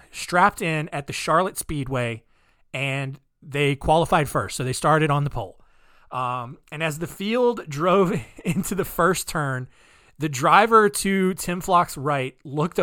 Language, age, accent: English, 20-39, American